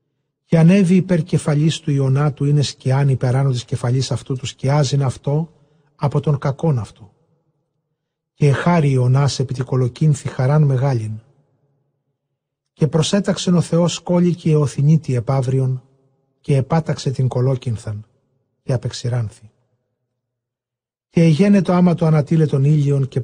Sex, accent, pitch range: male, native, 130-155 Hz